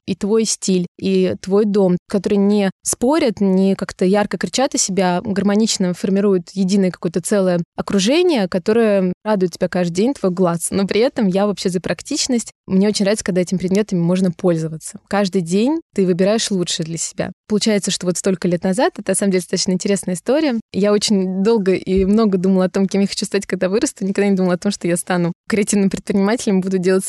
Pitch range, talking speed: 185-220 Hz, 195 wpm